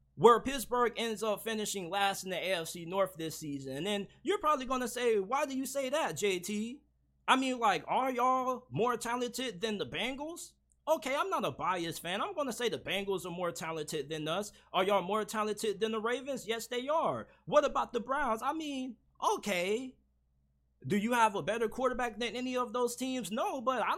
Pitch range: 205-260 Hz